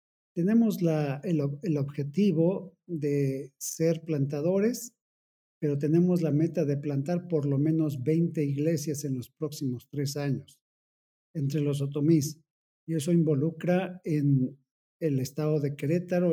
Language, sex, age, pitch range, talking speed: Spanish, male, 50-69, 140-170 Hz, 130 wpm